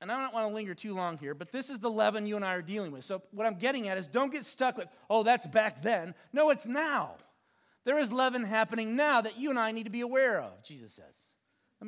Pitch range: 175-225 Hz